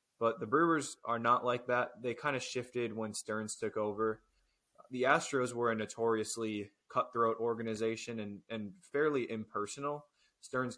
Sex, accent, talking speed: male, American, 150 wpm